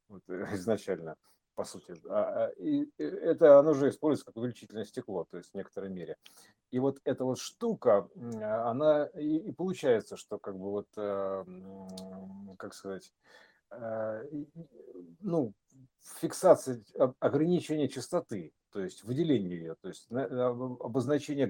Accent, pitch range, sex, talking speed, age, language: native, 100-140 Hz, male, 115 wpm, 50-69, Russian